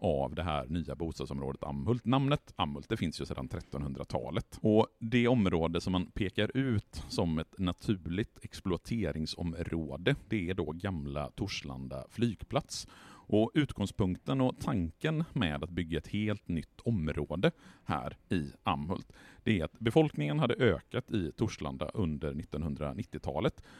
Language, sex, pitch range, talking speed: Swedish, male, 80-115 Hz, 135 wpm